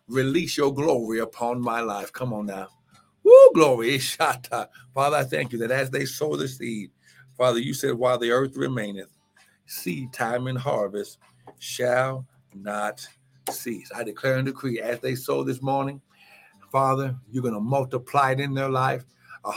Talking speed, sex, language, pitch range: 165 wpm, male, English, 120-150 Hz